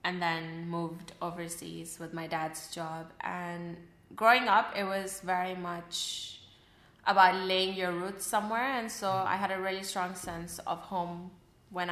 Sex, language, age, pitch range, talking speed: female, English, 20-39, 170-210 Hz, 155 wpm